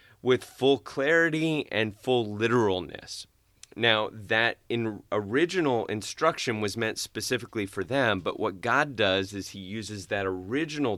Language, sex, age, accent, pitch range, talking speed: English, male, 30-49, American, 100-130 Hz, 135 wpm